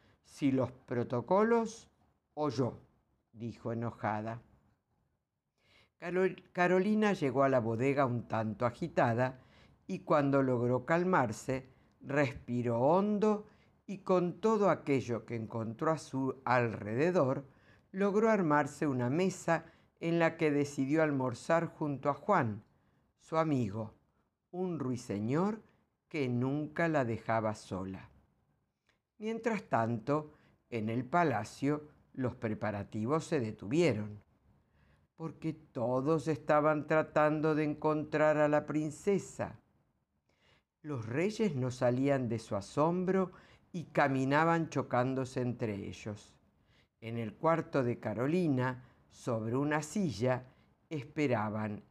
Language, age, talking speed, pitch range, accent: Spanish, 50-69, 105 wpm, 115-165 Hz, Argentinian